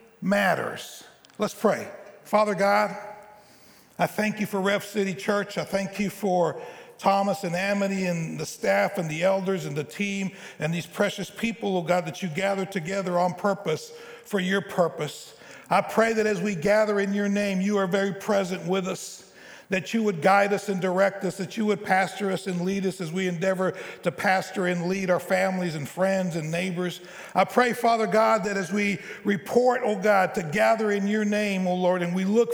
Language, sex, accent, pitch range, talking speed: English, male, American, 175-205 Hz, 195 wpm